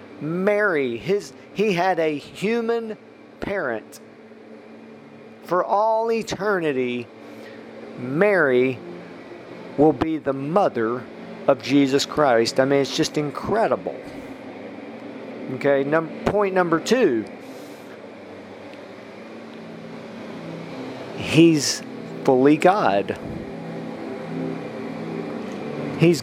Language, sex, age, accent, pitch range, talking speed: English, male, 40-59, American, 130-180 Hz, 75 wpm